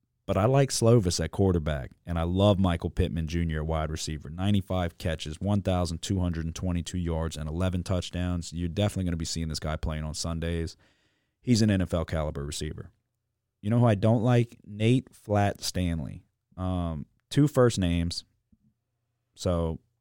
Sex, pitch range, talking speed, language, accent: male, 85-115 Hz, 150 wpm, English, American